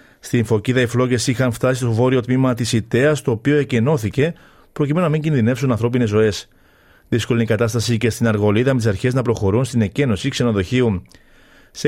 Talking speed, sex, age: 175 wpm, male, 40-59